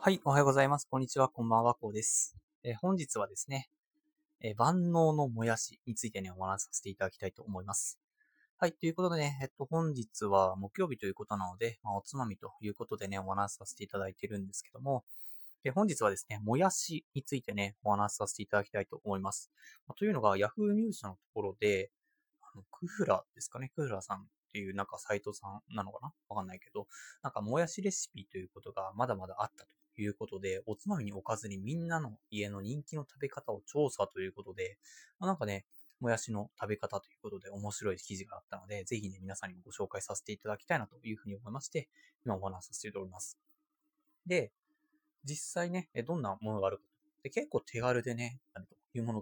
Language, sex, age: Japanese, male, 20-39